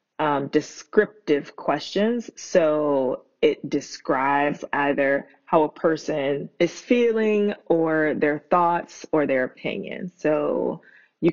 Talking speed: 105 wpm